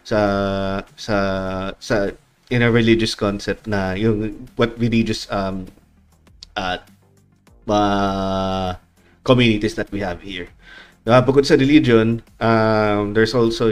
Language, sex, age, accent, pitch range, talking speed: Filipino, male, 20-39, native, 95-115 Hz, 115 wpm